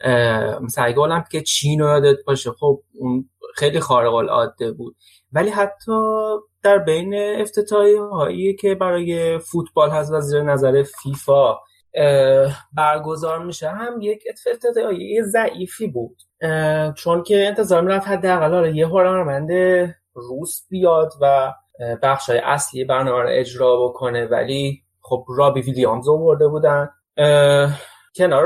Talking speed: 120 wpm